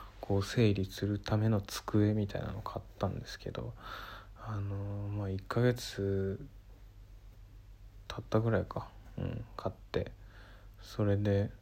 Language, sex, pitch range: Japanese, male, 100-115 Hz